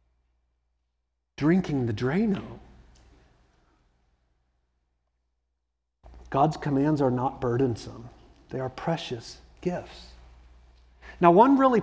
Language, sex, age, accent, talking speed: English, male, 50-69, American, 75 wpm